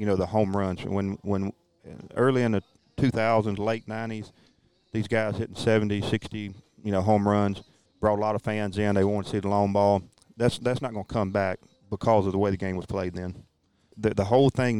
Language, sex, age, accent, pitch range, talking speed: English, male, 40-59, American, 100-120 Hz, 225 wpm